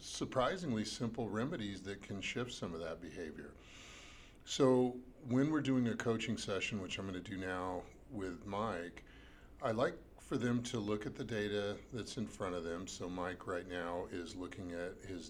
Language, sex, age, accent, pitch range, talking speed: English, male, 50-69, American, 90-115 Hz, 180 wpm